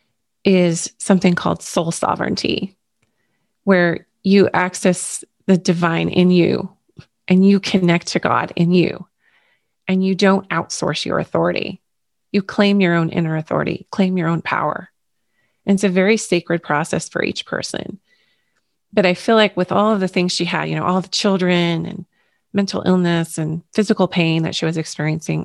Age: 30-49